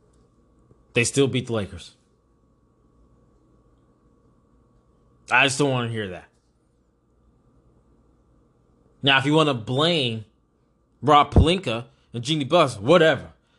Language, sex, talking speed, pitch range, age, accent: English, male, 105 wpm, 105-160 Hz, 20-39, American